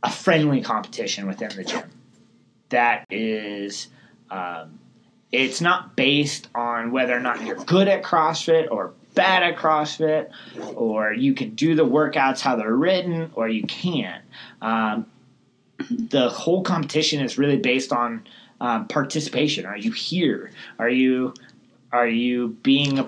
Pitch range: 115-150 Hz